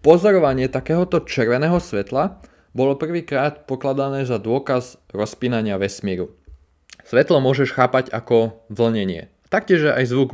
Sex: male